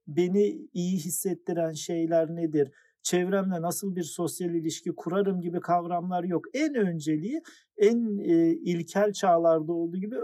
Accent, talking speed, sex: native, 125 wpm, male